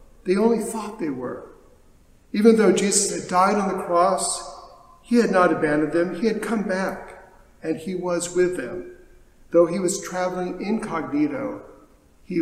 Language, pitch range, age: English, 170-210 Hz, 50-69